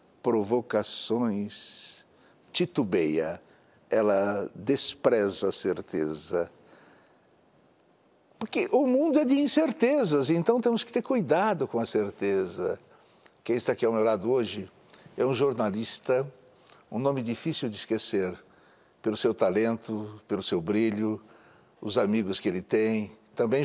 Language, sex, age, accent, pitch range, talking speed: Portuguese, male, 60-79, Brazilian, 110-165 Hz, 120 wpm